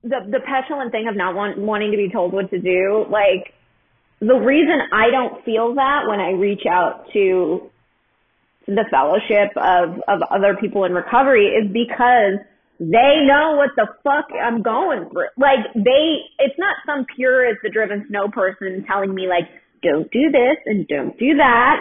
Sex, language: female, English